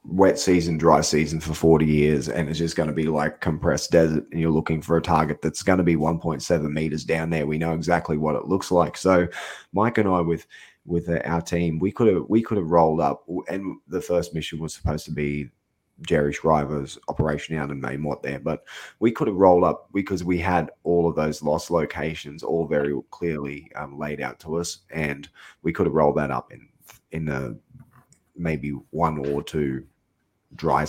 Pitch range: 75-85 Hz